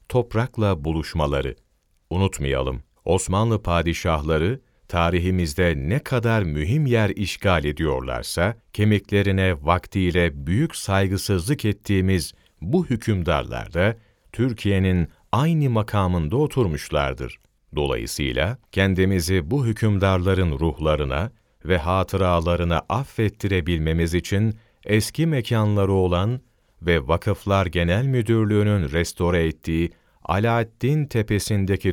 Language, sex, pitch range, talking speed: Turkish, male, 85-110 Hz, 80 wpm